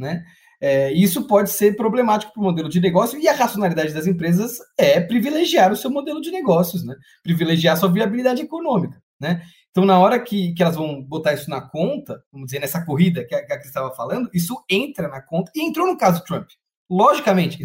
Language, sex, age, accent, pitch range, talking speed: Portuguese, male, 20-39, Brazilian, 150-215 Hz, 210 wpm